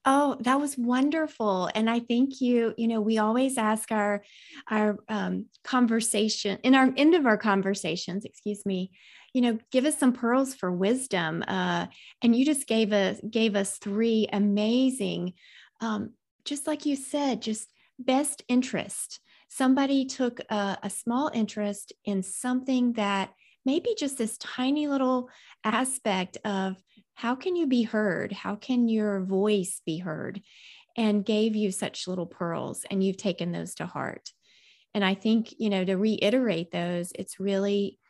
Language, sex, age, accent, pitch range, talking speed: English, female, 30-49, American, 195-255 Hz, 155 wpm